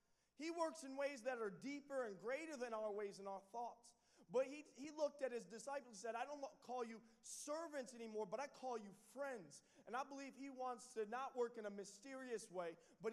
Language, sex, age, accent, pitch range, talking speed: English, male, 20-39, American, 190-255 Hz, 225 wpm